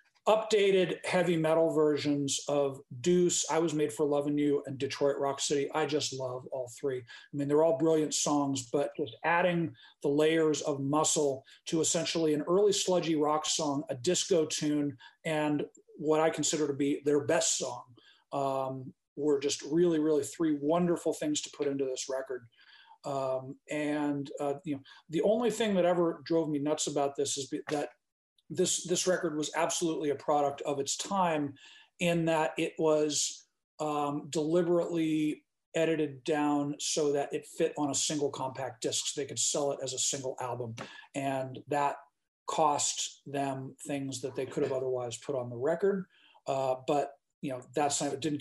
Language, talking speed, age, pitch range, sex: English, 175 wpm, 40-59, 140-160 Hz, male